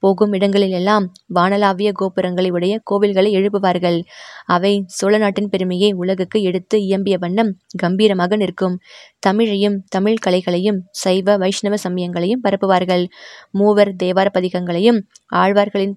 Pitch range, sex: 185-205 Hz, female